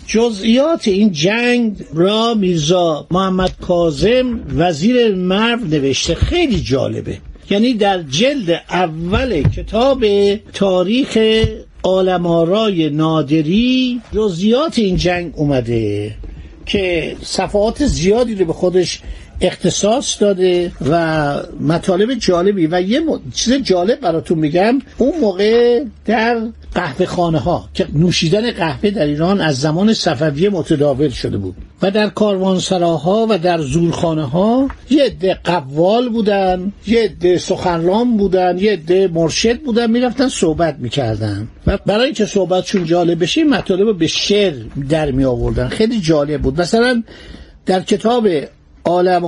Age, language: 60-79, Persian